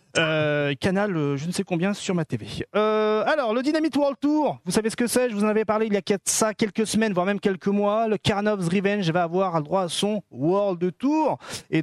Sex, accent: male, French